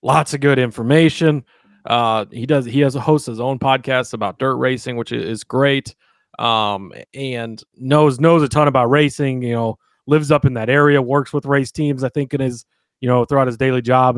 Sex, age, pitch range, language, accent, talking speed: male, 30-49, 120-145 Hz, English, American, 210 wpm